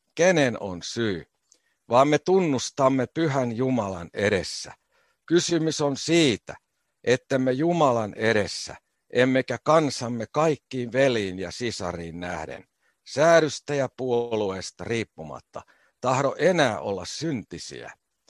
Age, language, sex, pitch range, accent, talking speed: 60-79, Finnish, male, 100-145 Hz, native, 100 wpm